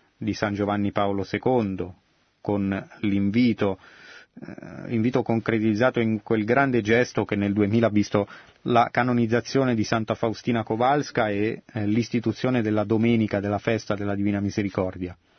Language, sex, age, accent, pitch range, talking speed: Italian, male, 30-49, native, 100-120 Hz, 140 wpm